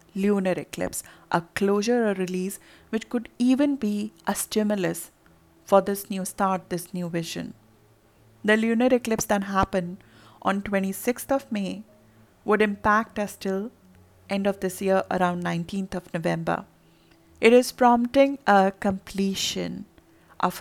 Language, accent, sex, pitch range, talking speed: English, Indian, female, 180-215 Hz, 135 wpm